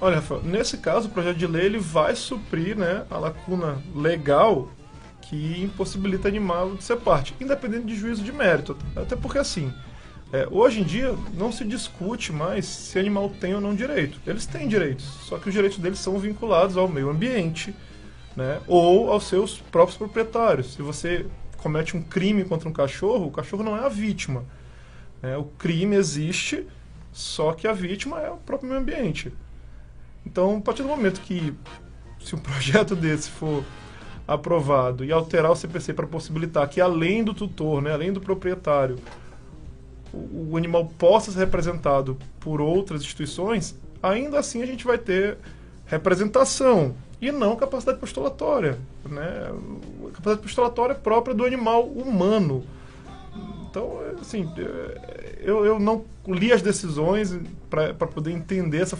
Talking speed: 155 wpm